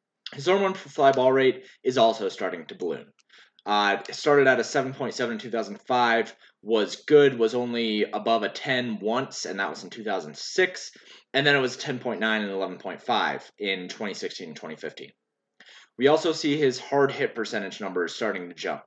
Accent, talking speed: American, 160 wpm